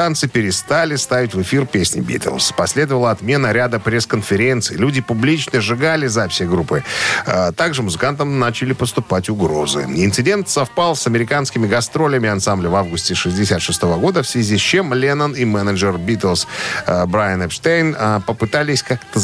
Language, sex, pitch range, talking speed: Russian, male, 100-140 Hz, 130 wpm